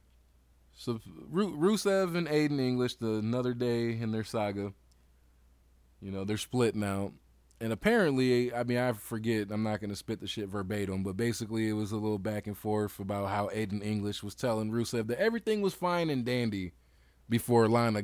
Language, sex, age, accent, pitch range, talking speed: English, male, 20-39, American, 95-125 Hz, 175 wpm